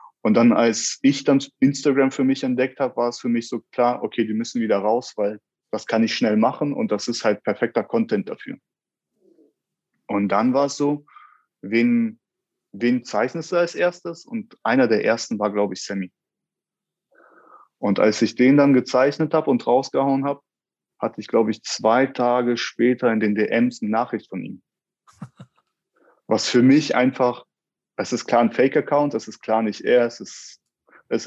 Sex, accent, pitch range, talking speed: male, German, 115-145 Hz, 180 wpm